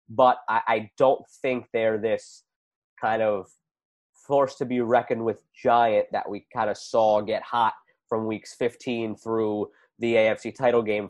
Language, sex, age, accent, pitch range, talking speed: English, male, 20-39, American, 110-145 Hz, 160 wpm